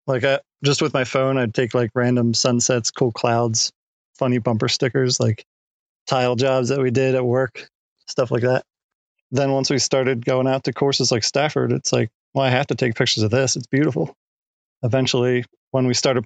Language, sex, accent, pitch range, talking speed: English, male, American, 125-135 Hz, 195 wpm